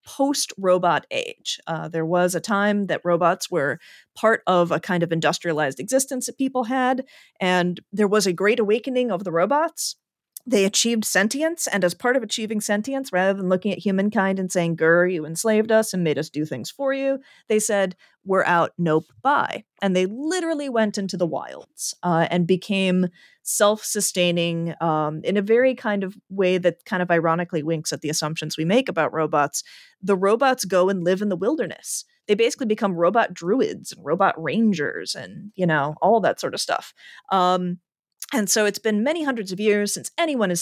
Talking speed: 190 wpm